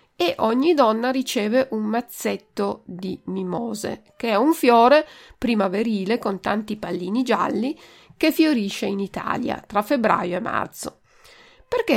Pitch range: 190-255 Hz